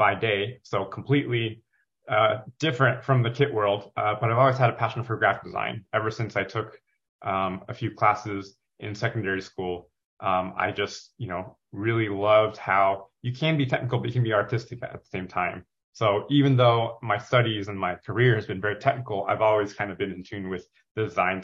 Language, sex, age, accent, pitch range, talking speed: English, male, 20-39, American, 100-120 Hz, 205 wpm